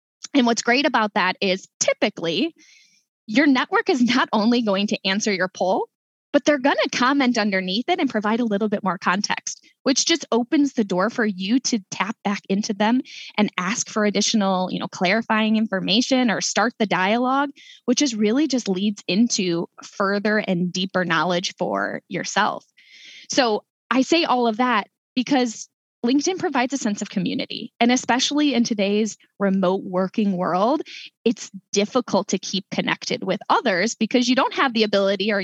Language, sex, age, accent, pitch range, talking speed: English, female, 10-29, American, 190-245 Hz, 170 wpm